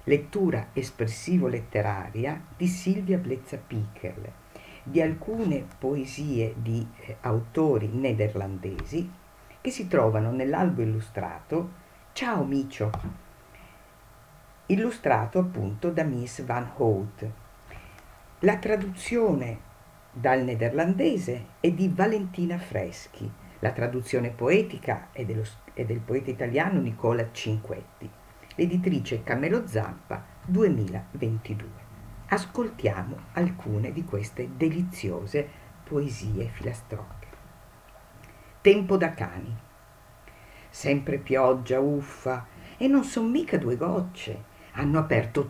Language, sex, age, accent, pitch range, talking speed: Italian, female, 50-69, native, 110-170 Hz, 90 wpm